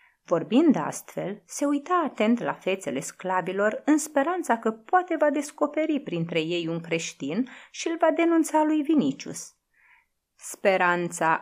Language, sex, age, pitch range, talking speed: Romanian, female, 30-49, 170-265 Hz, 130 wpm